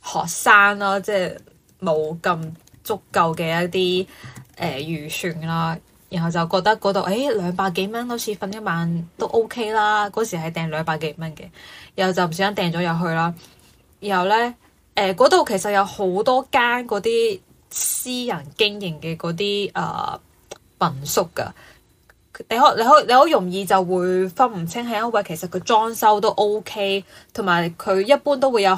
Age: 10-29